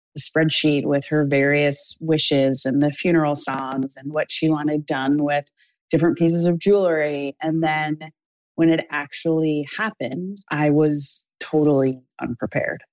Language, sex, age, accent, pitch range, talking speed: English, female, 20-39, American, 135-155 Hz, 140 wpm